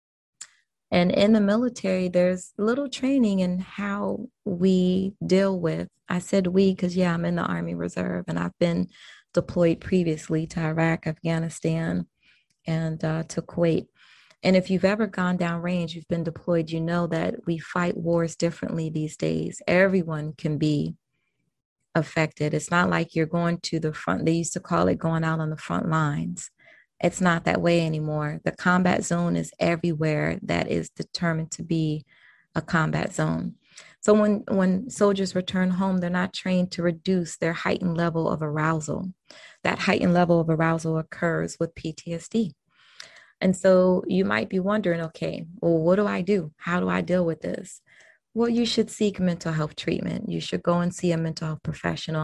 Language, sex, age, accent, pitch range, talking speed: English, female, 30-49, American, 160-185 Hz, 175 wpm